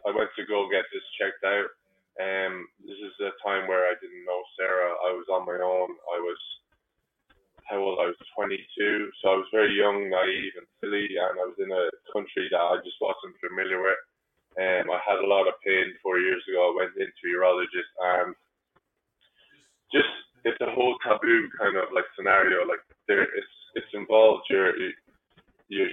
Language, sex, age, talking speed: English, male, 20-39, 190 wpm